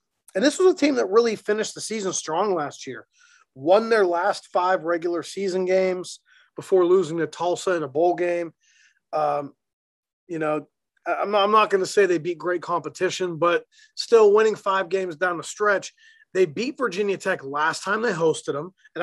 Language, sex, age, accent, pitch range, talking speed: English, male, 30-49, American, 160-205 Hz, 190 wpm